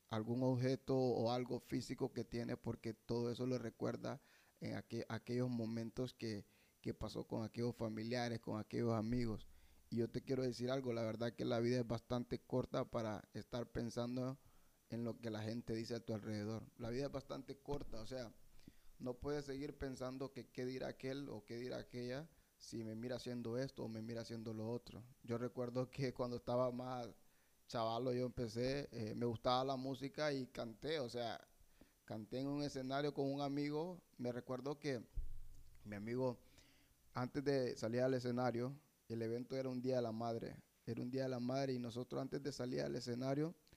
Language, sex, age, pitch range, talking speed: Spanish, male, 20-39, 115-130 Hz, 190 wpm